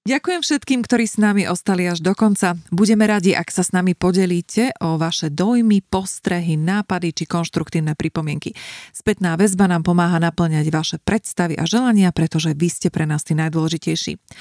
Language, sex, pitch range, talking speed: Slovak, female, 160-205 Hz, 165 wpm